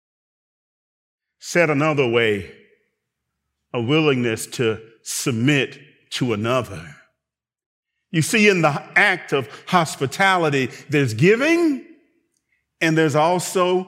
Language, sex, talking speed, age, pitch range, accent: English, male, 90 wpm, 40-59, 140-205 Hz, American